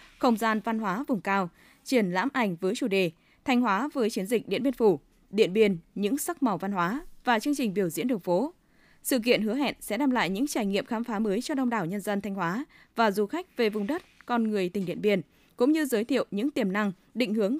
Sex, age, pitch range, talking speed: female, 20-39, 200-265 Hz, 250 wpm